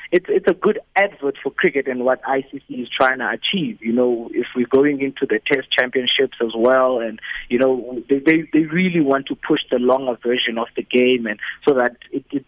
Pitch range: 120-140 Hz